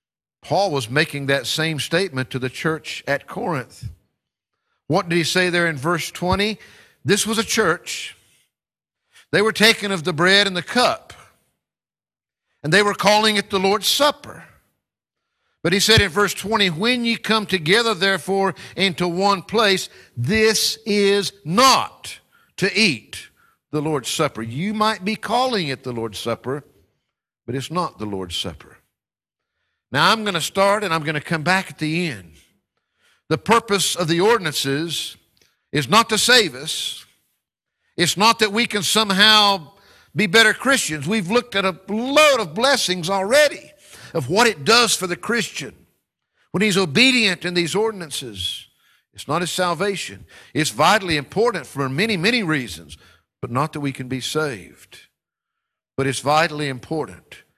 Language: English